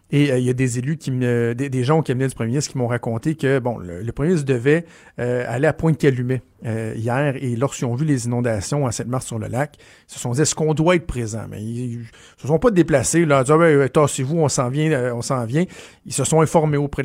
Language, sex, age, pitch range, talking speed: French, male, 50-69, 120-150 Hz, 280 wpm